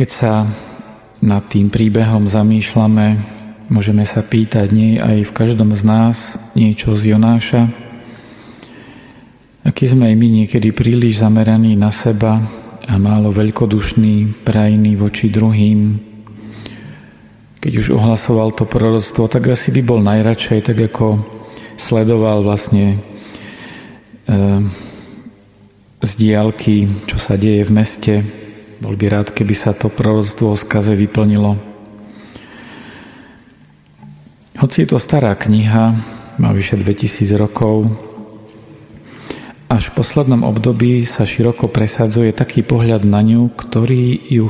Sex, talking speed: male, 115 wpm